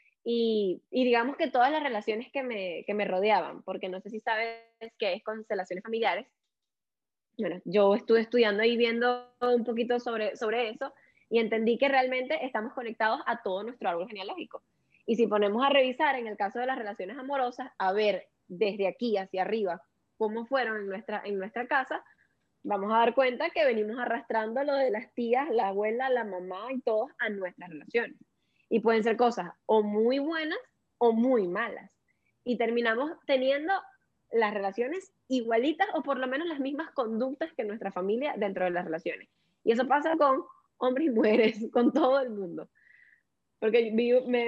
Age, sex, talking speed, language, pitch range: 10-29, female, 180 wpm, Spanish, 215-265 Hz